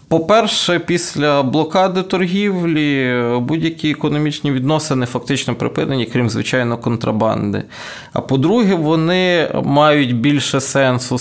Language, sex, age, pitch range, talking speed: Ukrainian, male, 20-39, 120-145 Hz, 95 wpm